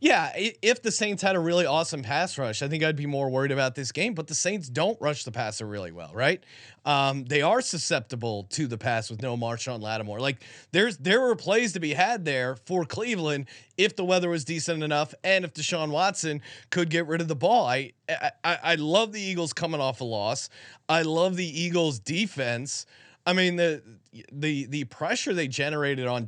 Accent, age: American, 30-49